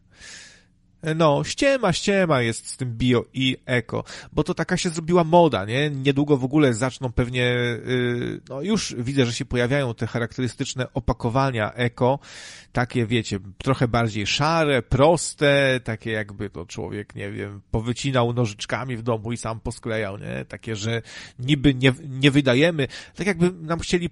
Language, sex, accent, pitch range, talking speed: Polish, male, native, 115-150 Hz, 150 wpm